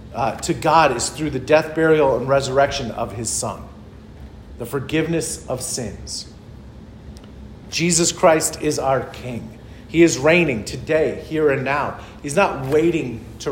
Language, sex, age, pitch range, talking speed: English, male, 40-59, 115-165 Hz, 145 wpm